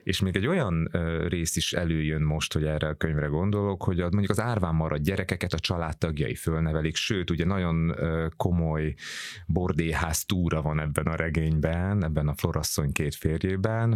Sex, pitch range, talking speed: male, 75-90 Hz, 160 wpm